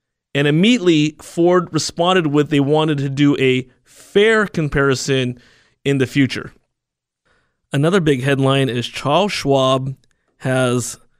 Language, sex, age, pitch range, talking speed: English, male, 30-49, 130-150 Hz, 120 wpm